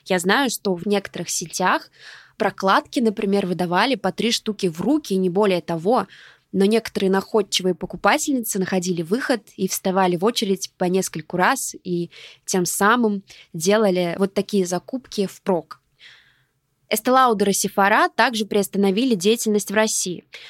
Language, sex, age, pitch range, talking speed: Russian, female, 20-39, 185-230 Hz, 135 wpm